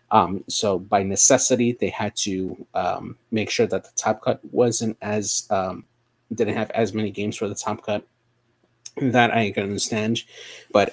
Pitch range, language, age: 95-110 Hz, English, 30-49